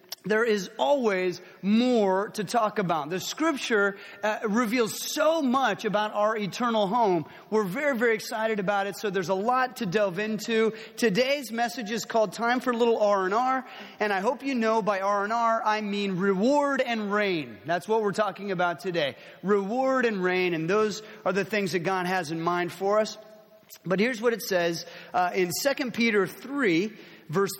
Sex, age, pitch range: male, 30-49, 185-235 Hz